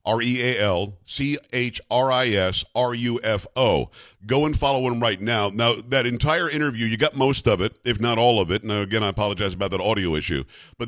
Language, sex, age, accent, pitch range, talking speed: English, male, 50-69, American, 105-135 Hz, 165 wpm